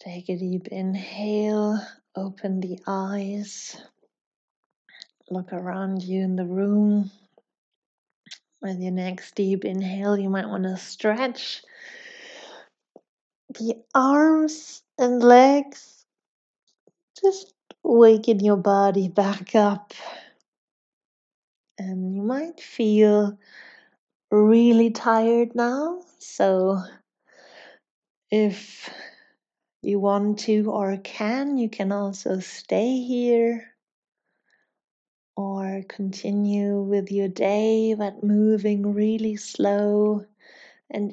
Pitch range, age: 195-225 Hz, 30-49